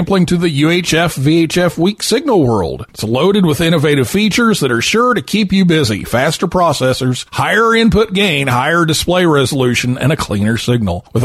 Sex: male